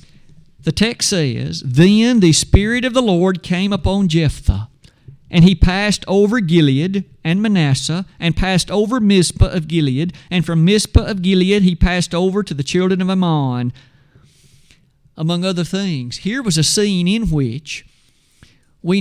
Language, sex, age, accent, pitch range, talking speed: English, male, 50-69, American, 135-185 Hz, 150 wpm